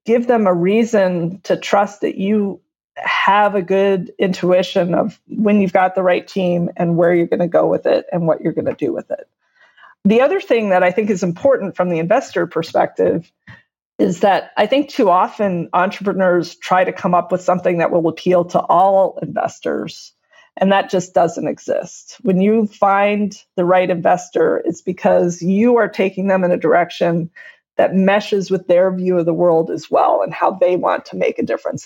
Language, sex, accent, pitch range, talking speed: English, female, American, 175-205 Hz, 195 wpm